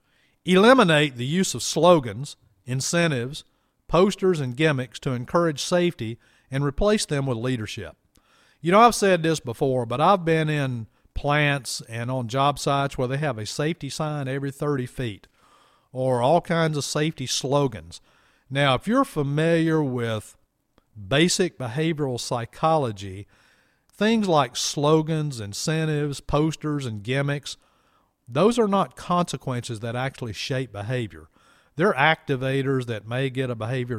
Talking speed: 135 wpm